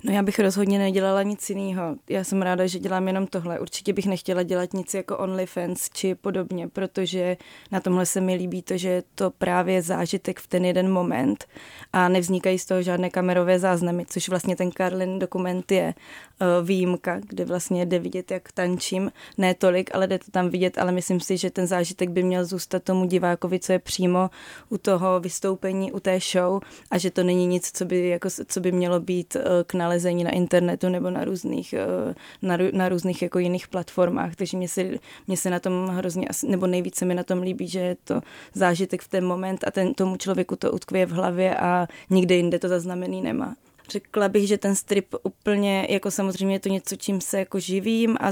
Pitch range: 180-190 Hz